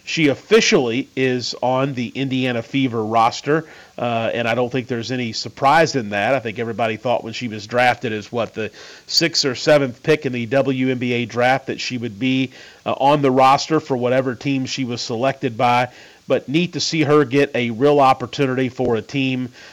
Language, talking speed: English, 195 wpm